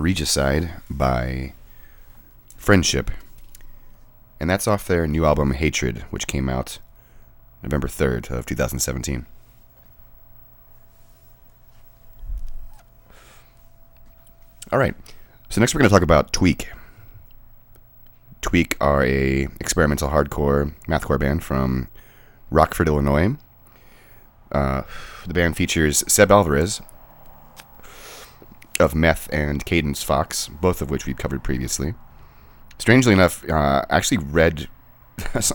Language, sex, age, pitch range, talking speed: English, male, 30-49, 70-95 Hz, 100 wpm